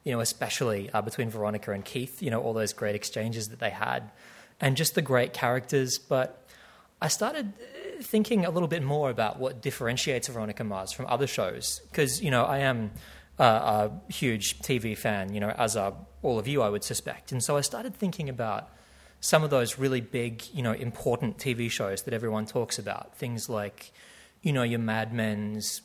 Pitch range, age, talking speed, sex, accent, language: 110-145 Hz, 20-39, 195 wpm, male, Australian, English